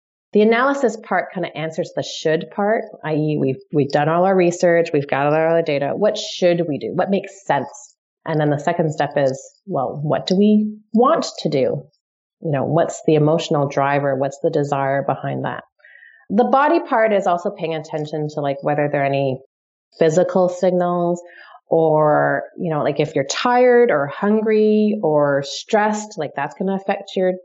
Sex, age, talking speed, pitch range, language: female, 30-49, 185 wpm, 150-205 Hz, English